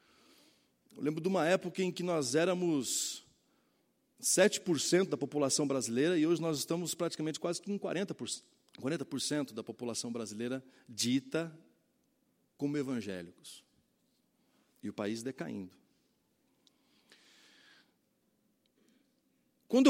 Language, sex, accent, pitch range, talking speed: Portuguese, male, Brazilian, 135-220 Hz, 100 wpm